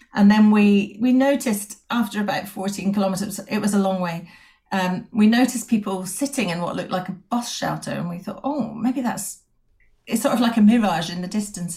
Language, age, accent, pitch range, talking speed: English, 40-59, British, 185-225 Hz, 215 wpm